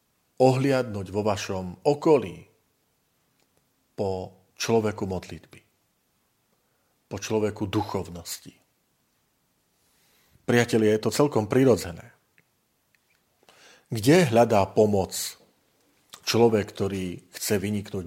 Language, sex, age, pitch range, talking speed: Slovak, male, 50-69, 95-120 Hz, 75 wpm